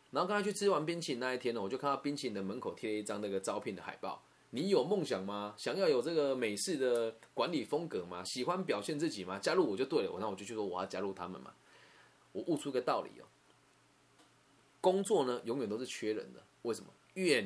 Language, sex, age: Chinese, male, 20-39